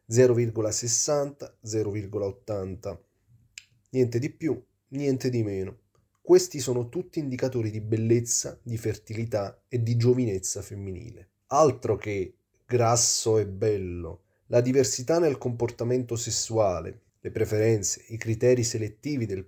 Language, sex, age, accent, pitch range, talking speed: Italian, male, 30-49, native, 105-125 Hz, 105 wpm